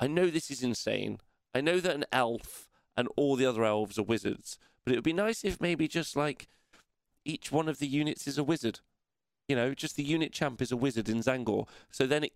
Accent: British